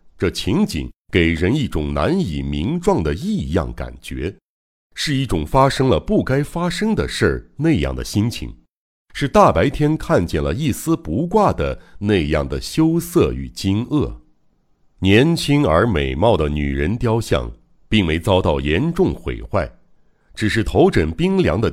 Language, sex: Chinese, male